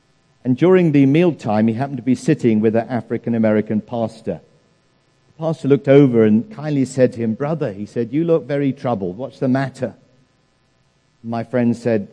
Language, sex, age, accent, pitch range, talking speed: English, male, 50-69, British, 110-140 Hz, 175 wpm